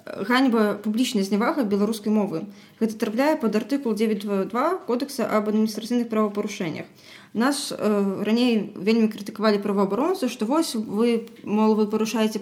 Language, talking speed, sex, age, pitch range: Russian, 125 wpm, female, 20-39, 205-245 Hz